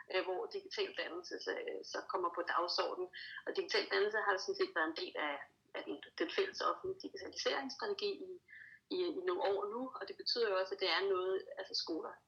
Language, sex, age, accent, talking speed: Danish, female, 30-49, native, 205 wpm